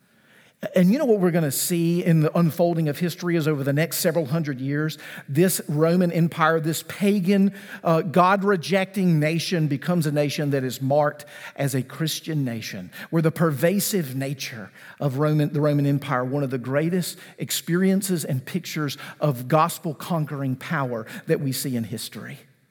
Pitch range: 140-185 Hz